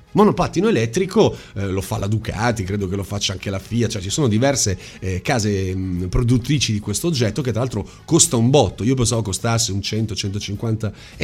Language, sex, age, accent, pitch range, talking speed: Italian, male, 30-49, native, 110-170 Hz, 200 wpm